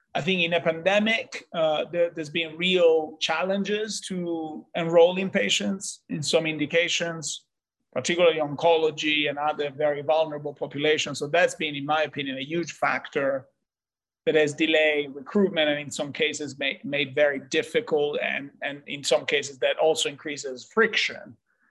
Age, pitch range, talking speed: 30-49, 150-175 Hz, 145 wpm